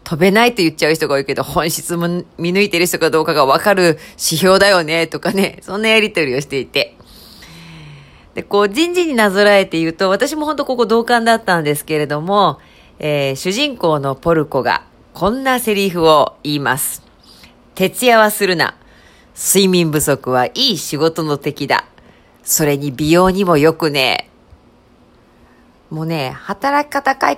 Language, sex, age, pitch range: Japanese, female, 40-59, 145-200 Hz